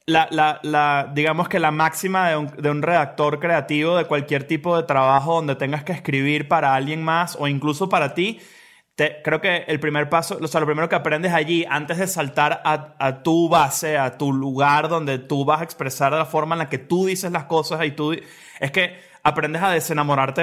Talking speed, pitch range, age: 215 wpm, 150-185 Hz, 20-39